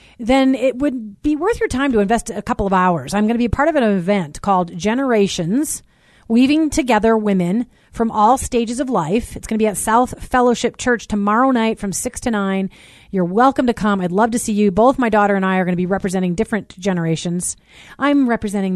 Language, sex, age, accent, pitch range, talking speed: English, female, 40-59, American, 200-265 Hz, 220 wpm